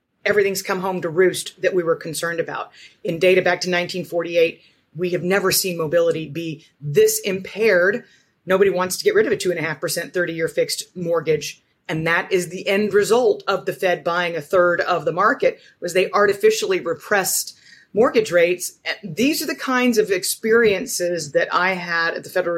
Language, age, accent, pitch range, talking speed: English, 30-49, American, 175-215 Hz, 180 wpm